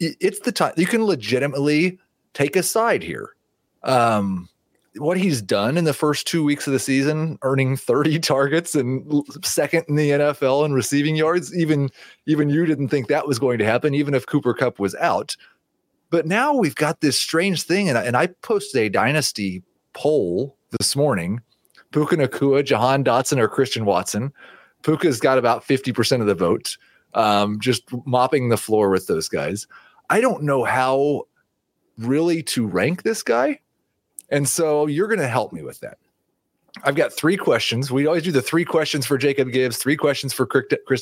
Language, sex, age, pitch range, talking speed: English, male, 30-49, 120-160 Hz, 180 wpm